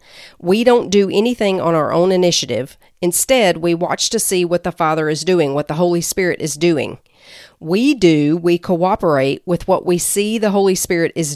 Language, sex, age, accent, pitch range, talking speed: English, female, 40-59, American, 170-210 Hz, 190 wpm